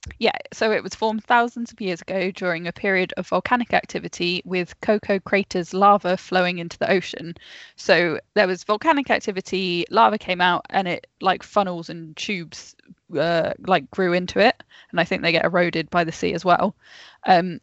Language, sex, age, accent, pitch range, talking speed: English, female, 10-29, British, 180-210 Hz, 185 wpm